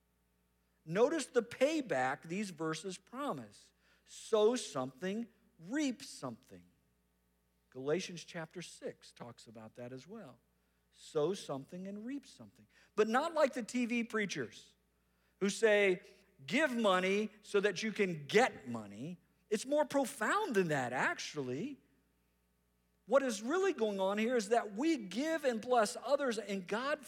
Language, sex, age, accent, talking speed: English, male, 50-69, American, 135 wpm